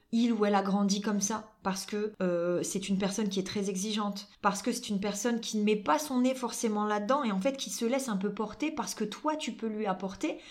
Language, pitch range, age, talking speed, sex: French, 195-245 Hz, 20-39, 265 wpm, female